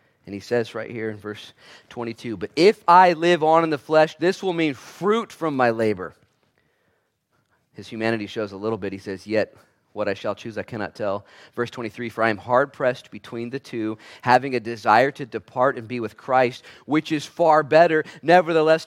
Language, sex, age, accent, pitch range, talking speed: English, male, 30-49, American, 115-165 Hz, 200 wpm